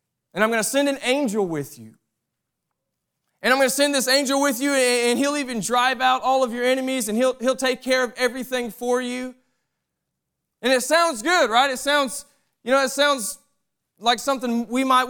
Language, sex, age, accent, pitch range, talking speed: English, male, 20-39, American, 205-260 Hz, 205 wpm